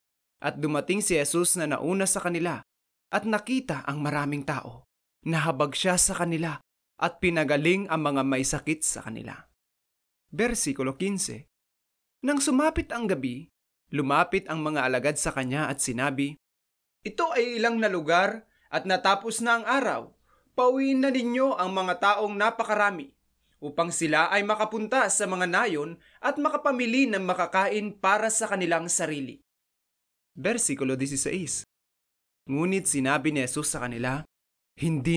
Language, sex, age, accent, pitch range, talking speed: English, male, 20-39, Filipino, 140-205 Hz, 135 wpm